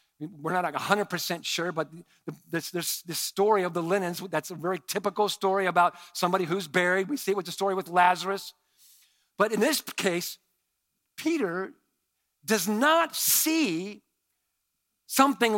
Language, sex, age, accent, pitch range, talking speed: English, male, 50-69, American, 180-270 Hz, 145 wpm